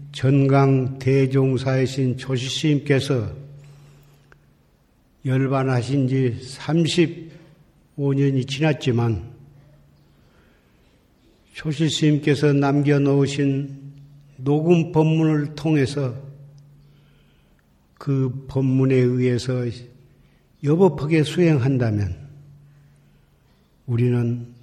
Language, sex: Korean, male